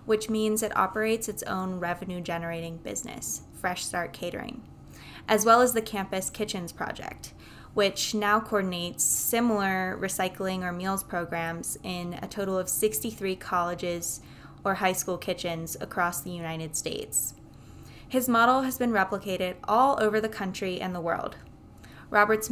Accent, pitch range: American, 175-210 Hz